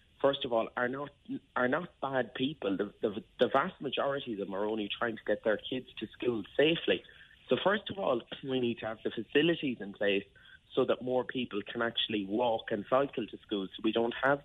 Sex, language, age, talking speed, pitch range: male, English, 30-49, 220 wpm, 105-130 Hz